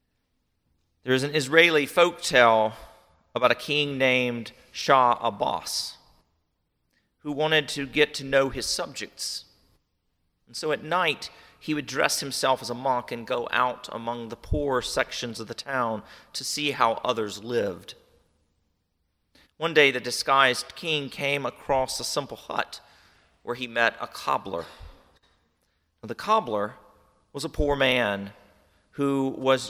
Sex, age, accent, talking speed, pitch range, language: male, 40-59, American, 140 wpm, 90-145 Hz, English